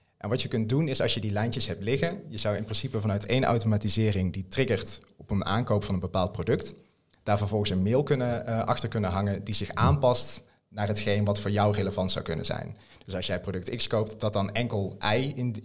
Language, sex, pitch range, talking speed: Dutch, male, 100-125 Hz, 235 wpm